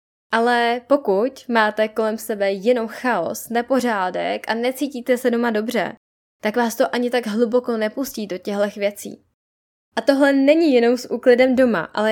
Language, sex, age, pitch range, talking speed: Czech, female, 10-29, 215-260 Hz, 155 wpm